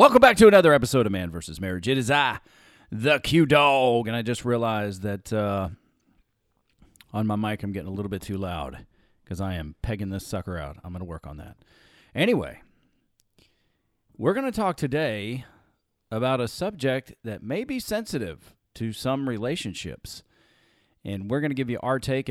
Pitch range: 100-130 Hz